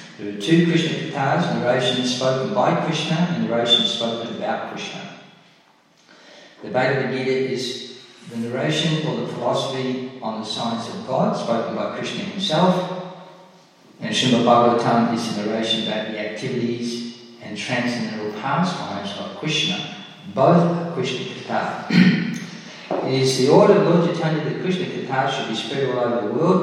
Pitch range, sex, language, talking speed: 115-180 Hz, male, English, 150 wpm